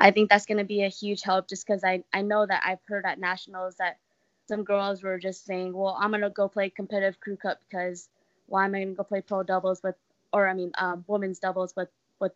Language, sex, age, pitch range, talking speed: English, female, 20-39, 180-200 Hz, 260 wpm